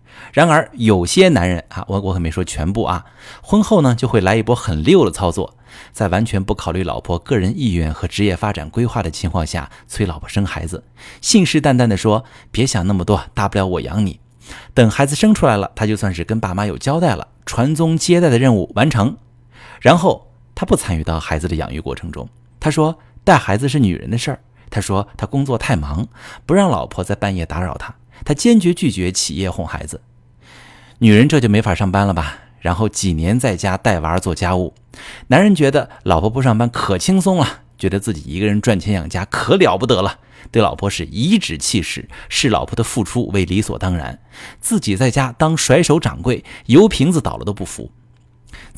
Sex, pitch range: male, 90-125 Hz